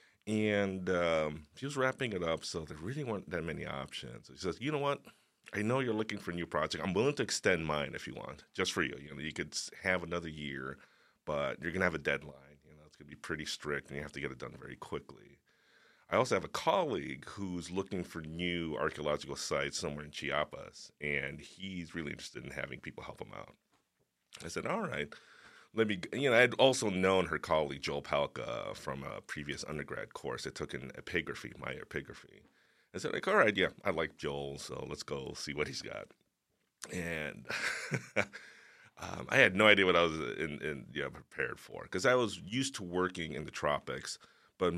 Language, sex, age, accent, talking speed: English, male, 30-49, American, 215 wpm